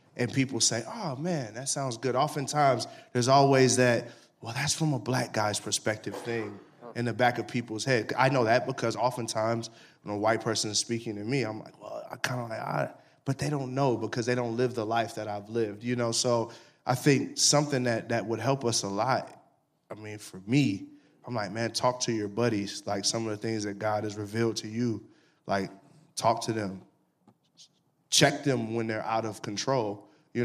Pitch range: 110-135 Hz